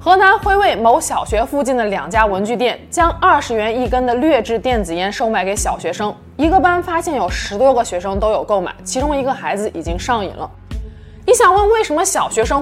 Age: 20-39